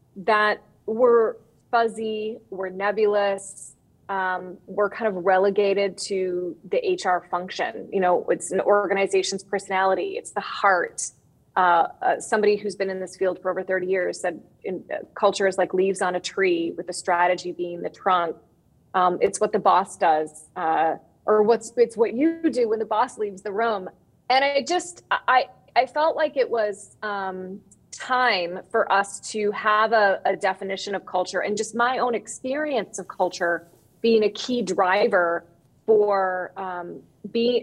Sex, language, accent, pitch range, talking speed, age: female, English, American, 185-225 Hz, 165 wpm, 30-49